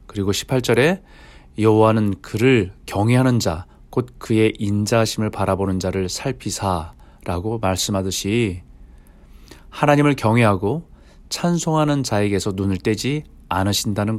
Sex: male